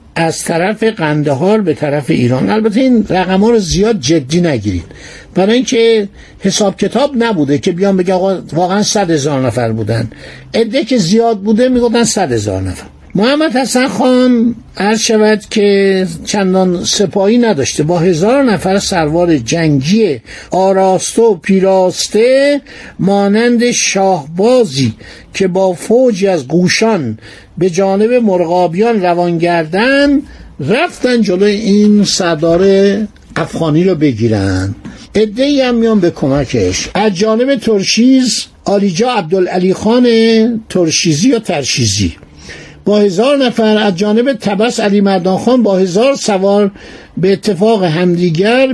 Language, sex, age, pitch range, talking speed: Persian, male, 60-79, 170-225 Hz, 120 wpm